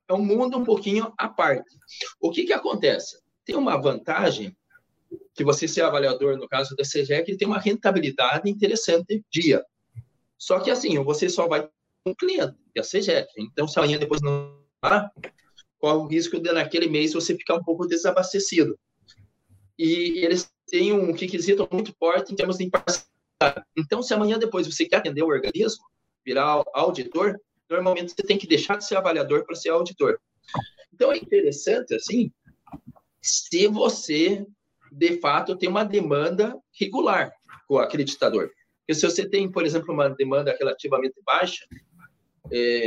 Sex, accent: male, Brazilian